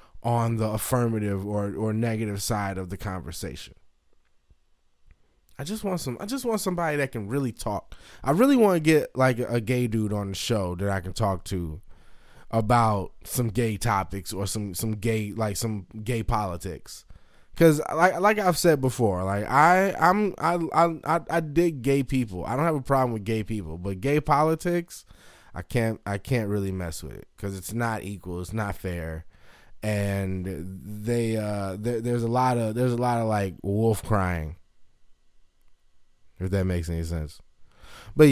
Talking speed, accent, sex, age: 180 wpm, American, male, 20-39